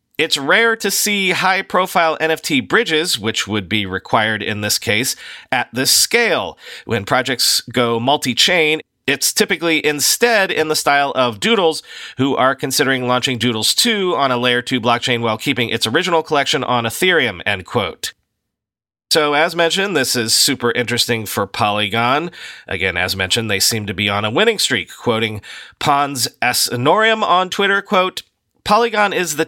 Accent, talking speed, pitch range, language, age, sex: American, 160 wpm, 115-180 Hz, English, 40-59, male